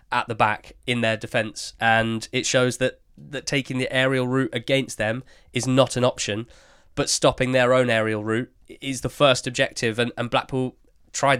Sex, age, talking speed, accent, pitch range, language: male, 20-39, 185 wpm, British, 115-135 Hz, English